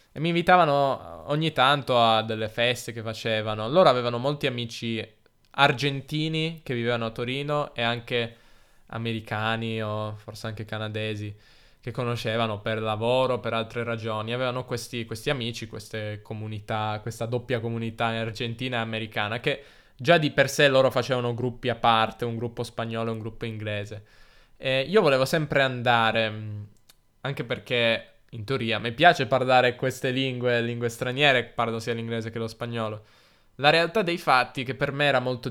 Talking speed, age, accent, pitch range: 160 wpm, 10-29, native, 115-135 Hz